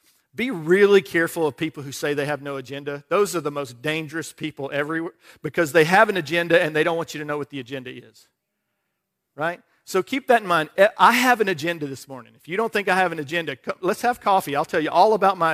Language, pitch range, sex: English, 155-195 Hz, male